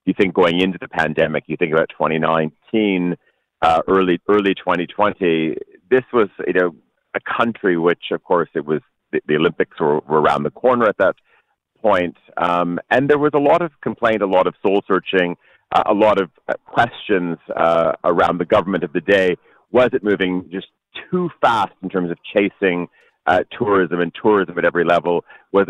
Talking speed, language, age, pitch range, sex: 185 wpm, English, 40-59, 85-100 Hz, male